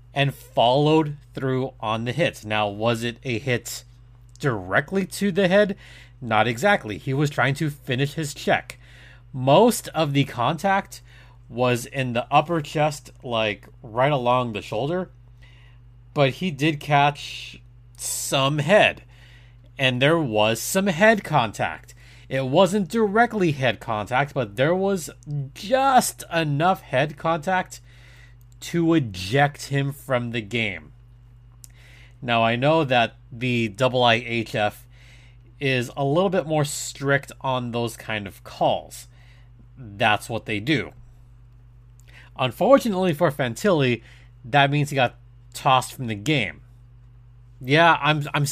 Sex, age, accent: male, 30-49, American